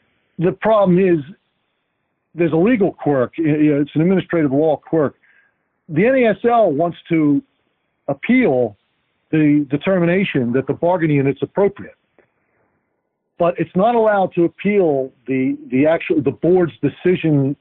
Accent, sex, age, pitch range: American, male, 50-69, 135-175 Hz